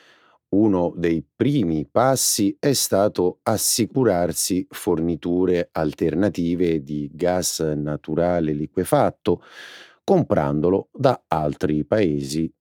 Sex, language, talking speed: male, Italian, 80 wpm